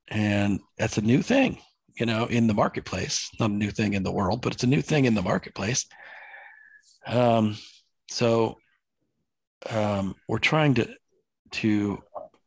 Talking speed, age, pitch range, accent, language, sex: 155 wpm, 40-59, 100-120 Hz, American, English, male